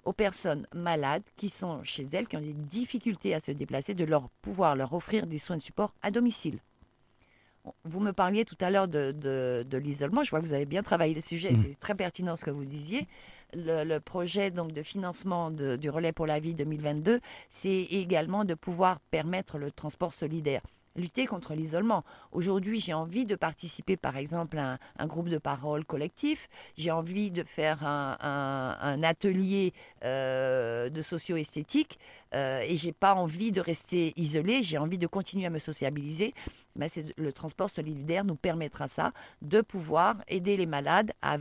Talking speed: 185 wpm